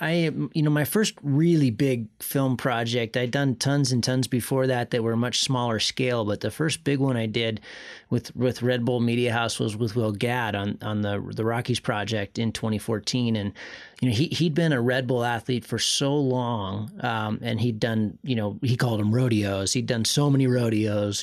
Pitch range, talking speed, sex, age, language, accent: 110-130 Hz, 215 wpm, male, 30-49, English, American